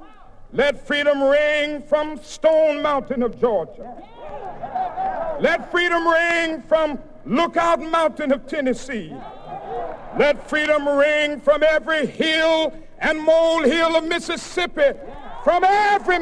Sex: male